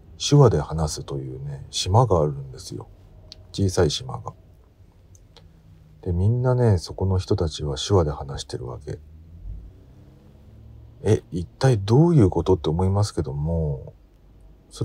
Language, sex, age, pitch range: Japanese, male, 50-69, 75-110 Hz